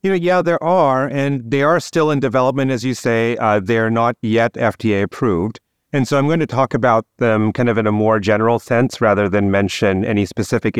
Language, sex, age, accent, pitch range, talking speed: English, male, 30-49, American, 110-135 Hz, 220 wpm